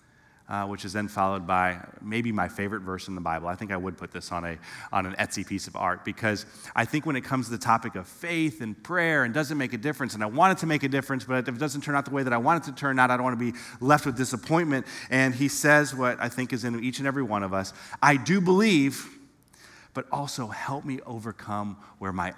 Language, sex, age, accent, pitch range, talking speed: English, male, 30-49, American, 95-130 Hz, 265 wpm